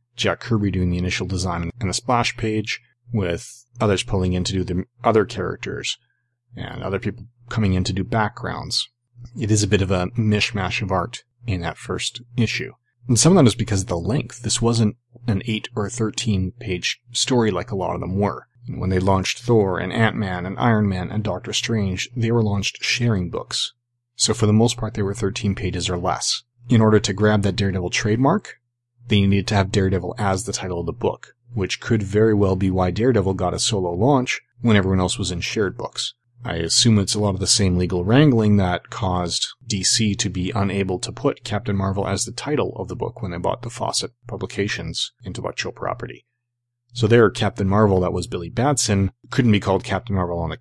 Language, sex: English, male